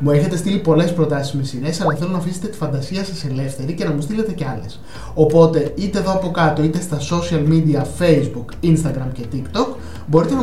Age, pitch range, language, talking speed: 20-39, 140-180 Hz, Greek, 205 wpm